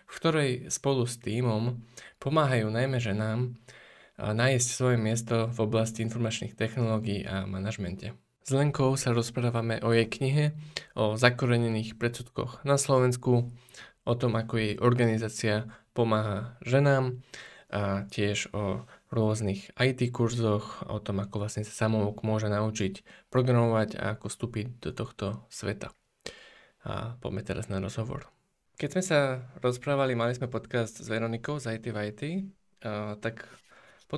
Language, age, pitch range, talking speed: Slovak, 20-39, 110-130 Hz, 135 wpm